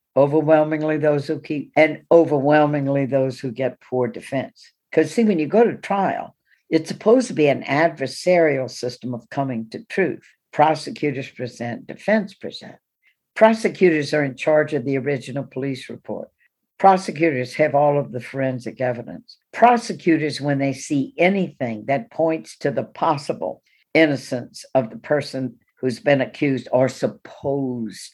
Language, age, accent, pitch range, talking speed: English, 60-79, American, 130-165 Hz, 145 wpm